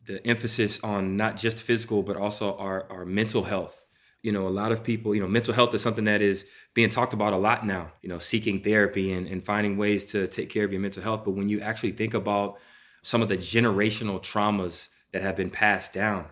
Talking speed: 230 wpm